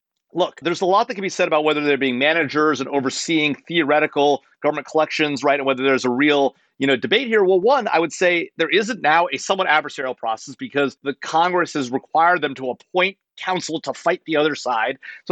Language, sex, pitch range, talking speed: English, male, 135-165 Hz, 215 wpm